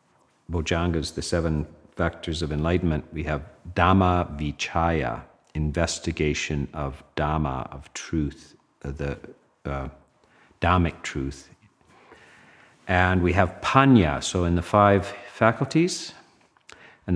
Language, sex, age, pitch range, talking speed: English, male, 50-69, 80-100 Hz, 100 wpm